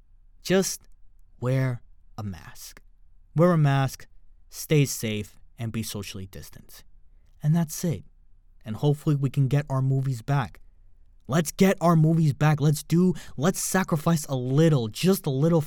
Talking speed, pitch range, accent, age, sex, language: 145 wpm, 90-150 Hz, American, 20-39, male, English